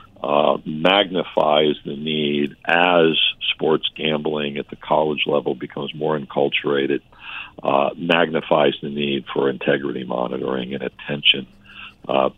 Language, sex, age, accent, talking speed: English, male, 60-79, American, 115 wpm